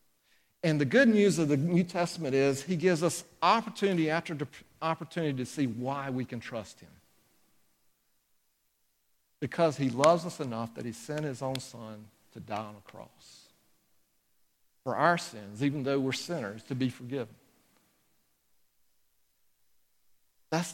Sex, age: male, 50-69